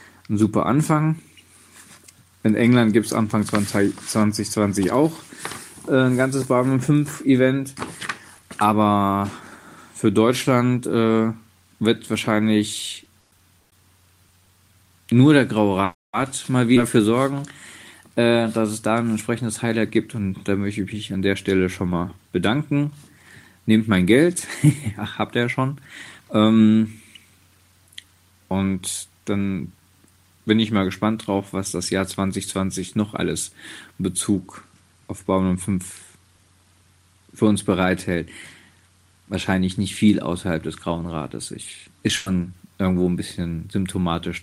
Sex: male